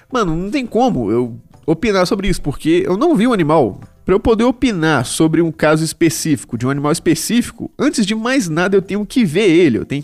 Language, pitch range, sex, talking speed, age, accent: Portuguese, 140-200 Hz, male, 220 wpm, 20-39, Brazilian